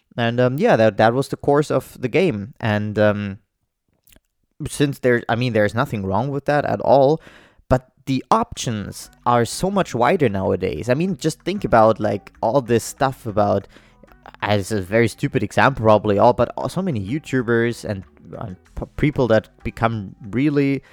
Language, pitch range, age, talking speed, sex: English, 105-140 Hz, 20-39, 170 wpm, male